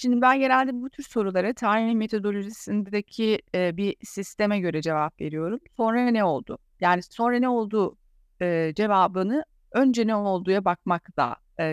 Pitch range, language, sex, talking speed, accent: 180-235 Hz, Turkish, female, 145 wpm, native